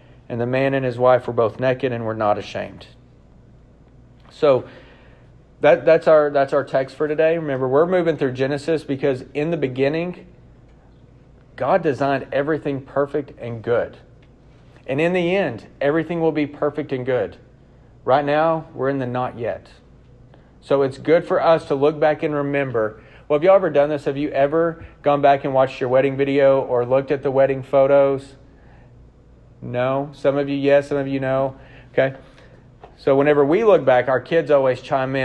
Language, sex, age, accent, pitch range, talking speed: English, male, 40-59, American, 125-145 Hz, 180 wpm